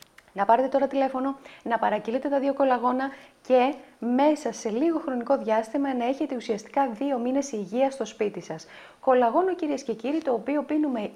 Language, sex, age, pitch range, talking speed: Greek, female, 30-49, 220-290 Hz, 165 wpm